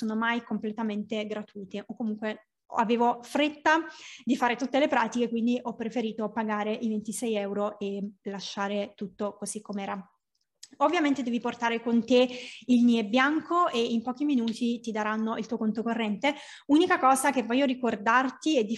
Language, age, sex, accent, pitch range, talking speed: Italian, 20-39, female, native, 220-265 Hz, 160 wpm